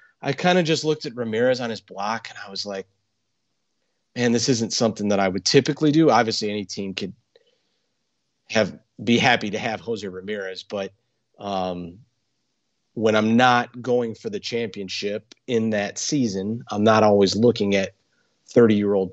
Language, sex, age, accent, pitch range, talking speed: English, male, 30-49, American, 100-125 Hz, 165 wpm